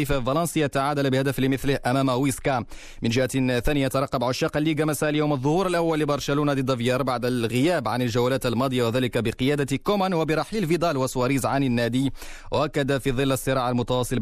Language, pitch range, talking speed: Arabic, 125-150 Hz, 155 wpm